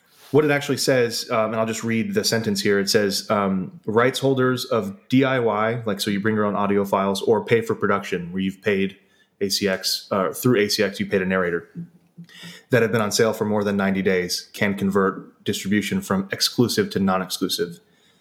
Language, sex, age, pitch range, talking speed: English, male, 20-39, 100-120 Hz, 195 wpm